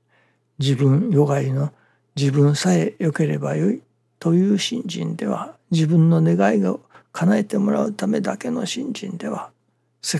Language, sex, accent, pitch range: Japanese, male, native, 125-205 Hz